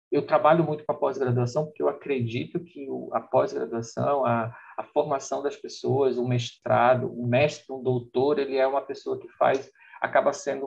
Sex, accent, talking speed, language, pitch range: male, Brazilian, 190 wpm, Portuguese, 120-140 Hz